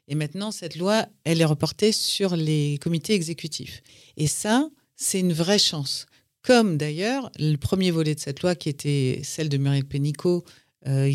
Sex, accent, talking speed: female, French, 170 wpm